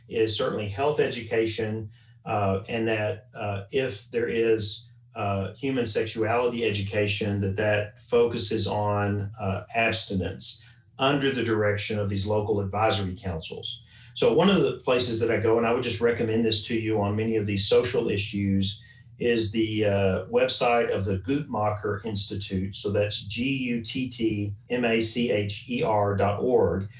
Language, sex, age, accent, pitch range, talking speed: English, male, 40-59, American, 105-120 Hz, 140 wpm